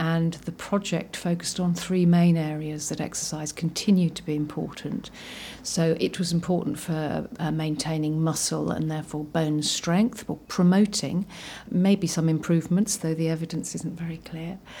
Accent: British